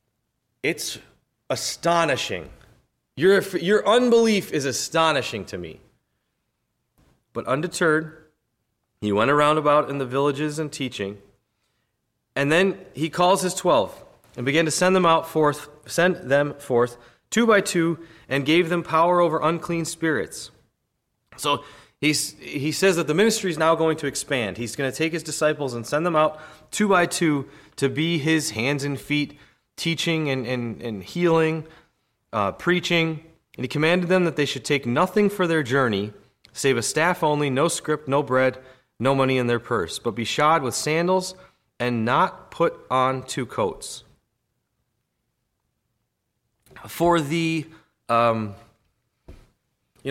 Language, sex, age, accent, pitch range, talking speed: English, male, 30-49, American, 125-165 Hz, 150 wpm